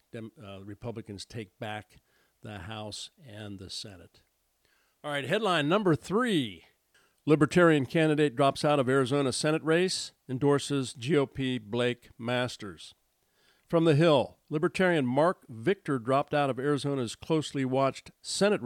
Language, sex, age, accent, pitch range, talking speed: English, male, 50-69, American, 120-155 Hz, 125 wpm